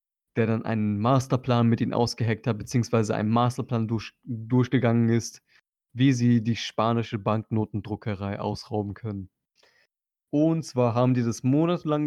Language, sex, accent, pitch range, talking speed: German, male, German, 110-130 Hz, 135 wpm